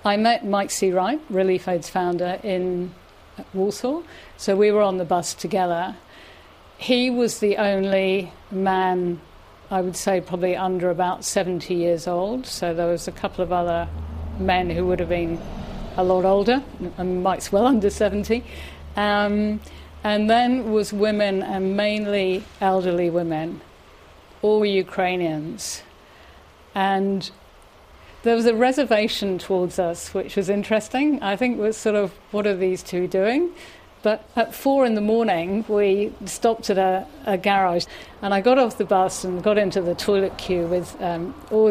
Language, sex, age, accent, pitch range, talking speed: English, female, 50-69, British, 180-210 Hz, 160 wpm